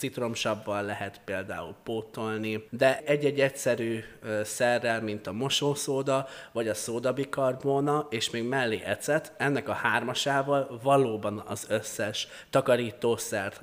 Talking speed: 110 wpm